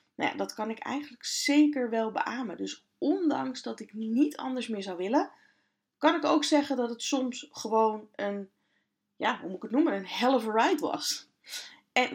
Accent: Dutch